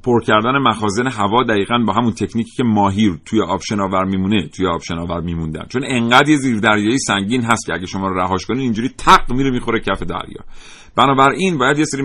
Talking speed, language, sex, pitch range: 200 wpm, Persian, male, 95-130 Hz